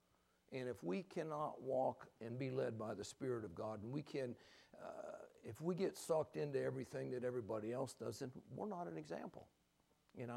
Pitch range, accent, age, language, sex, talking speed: 105-140 Hz, American, 60-79, English, male, 190 wpm